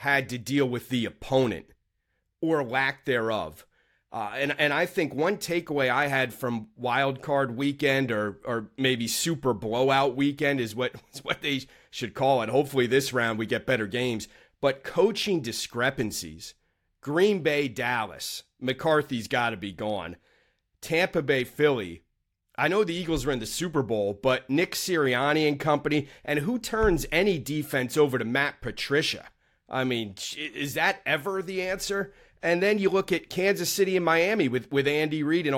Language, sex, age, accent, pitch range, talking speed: English, male, 30-49, American, 120-155 Hz, 170 wpm